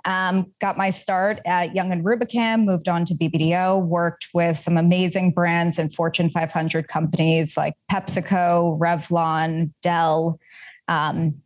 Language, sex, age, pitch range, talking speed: English, female, 20-39, 170-195 Hz, 135 wpm